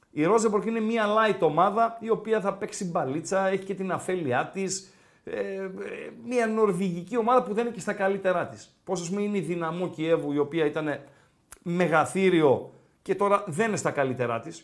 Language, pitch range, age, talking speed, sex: Greek, 155-225 Hz, 50-69, 190 wpm, male